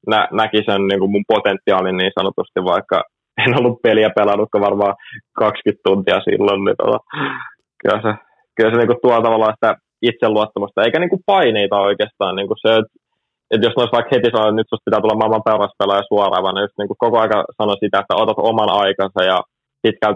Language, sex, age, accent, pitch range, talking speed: Finnish, male, 20-39, native, 100-110 Hz, 180 wpm